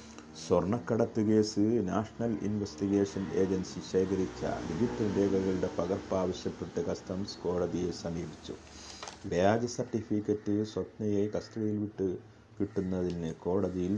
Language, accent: Malayalam, native